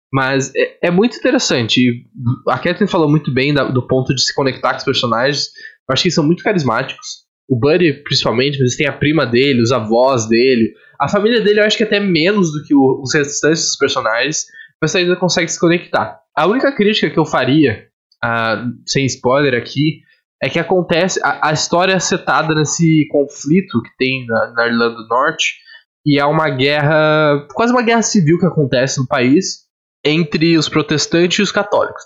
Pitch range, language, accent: 135-180 Hz, Portuguese, Brazilian